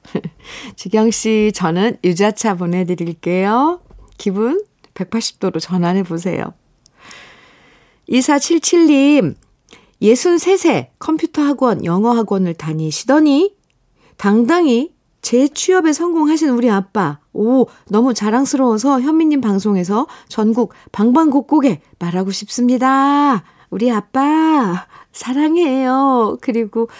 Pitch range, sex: 180-250 Hz, female